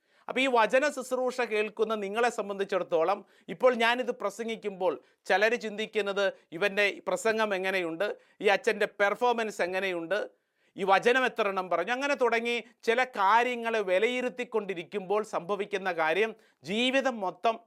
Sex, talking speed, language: male, 110 wpm, Malayalam